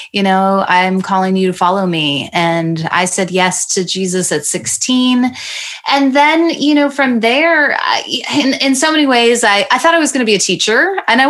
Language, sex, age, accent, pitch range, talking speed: English, female, 20-39, American, 180-250 Hz, 205 wpm